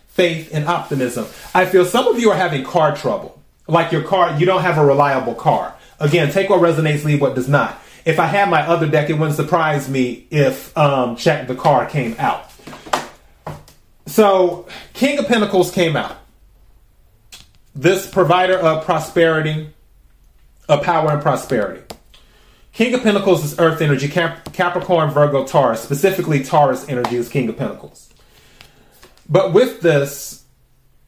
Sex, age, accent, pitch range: male, 30-49, American, 140-185 Hz